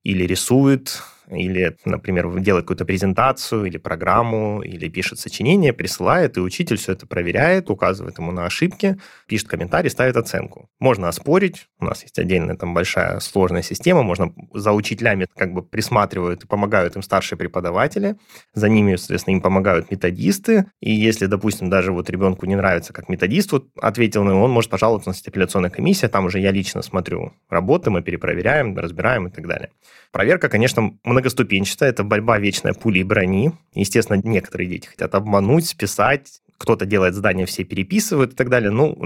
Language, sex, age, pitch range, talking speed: Russian, male, 20-39, 95-120 Hz, 170 wpm